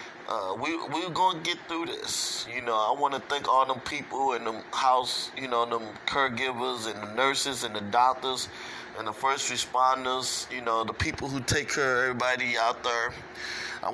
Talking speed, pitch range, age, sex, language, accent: 195 wpm, 120-140 Hz, 20-39, male, English, American